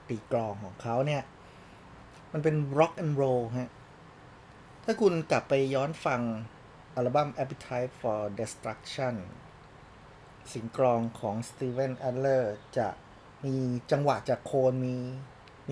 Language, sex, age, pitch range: Thai, male, 30-49, 115-140 Hz